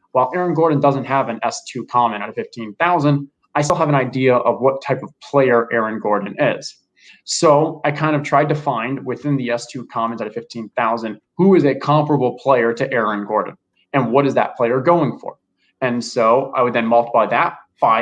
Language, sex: English, male